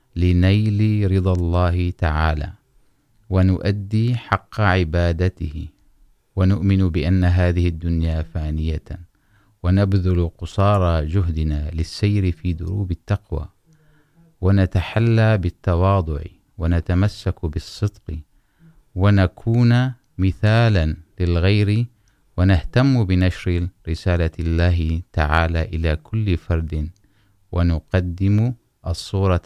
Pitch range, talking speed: 85-100 Hz, 75 wpm